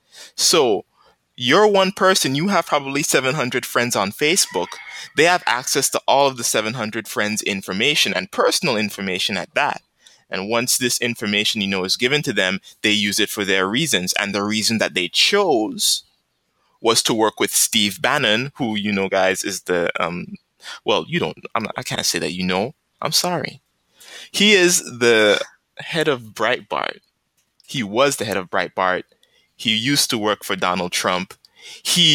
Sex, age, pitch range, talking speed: male, 20-39, 100-135 Hz, 175 wpm